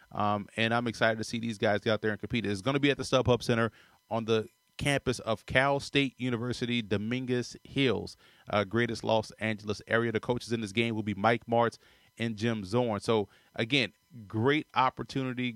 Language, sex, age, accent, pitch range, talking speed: English, male, 30-49, American, 115-135 Hz, 195 wpm